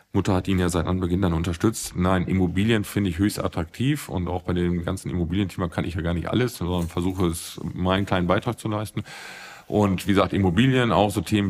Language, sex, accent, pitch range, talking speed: German, male, German, 90-105 Hz, 215 wpm